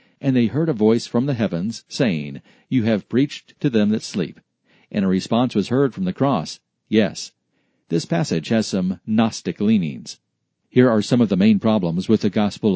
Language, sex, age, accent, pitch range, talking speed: English, male, 50-69, American, 105-140 Hz, 195 wpm